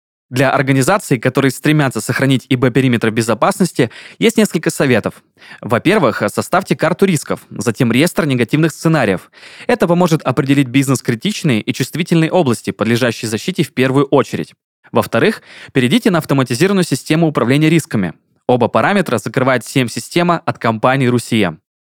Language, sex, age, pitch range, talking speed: Russian, male, 20-39, 125-160 Hz, 125 wpm